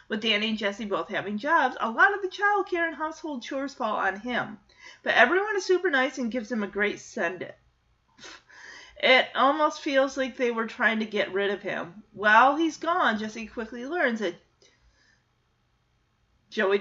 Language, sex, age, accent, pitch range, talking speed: English, female, 40-59, American, 200-270 Hz, 180 wpm